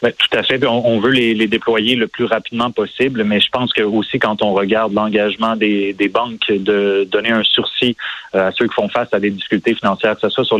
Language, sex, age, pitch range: French, male, 30-49, 105-115 Hz